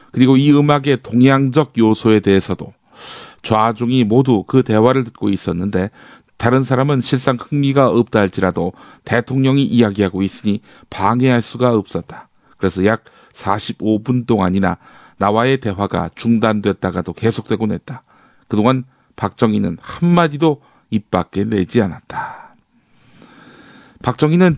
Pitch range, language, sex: 105-135 Hz, Korean, male